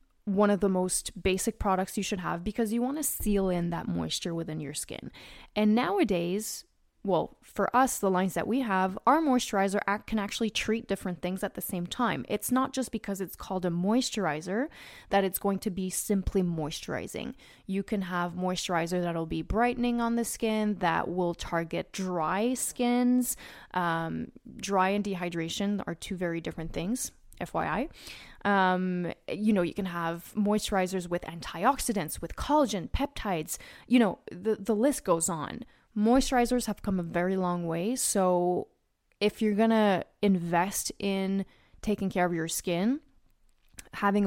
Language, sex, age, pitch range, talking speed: English, female, 20-39, 175-220 Hz, 165 wpm